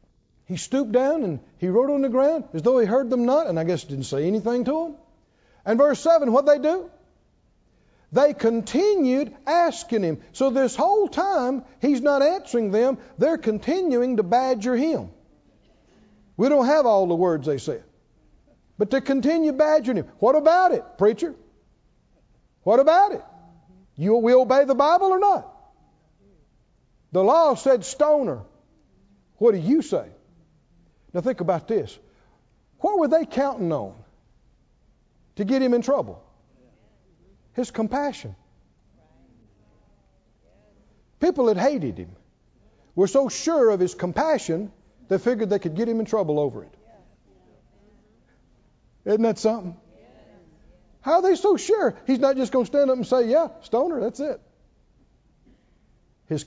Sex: male